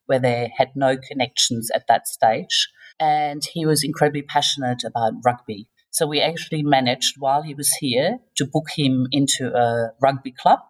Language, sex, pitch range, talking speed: English, female, 125-155 Hz, 170 wpm